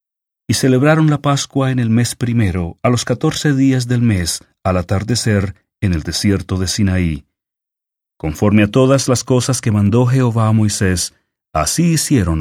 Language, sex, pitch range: English, male, 90-125 Hz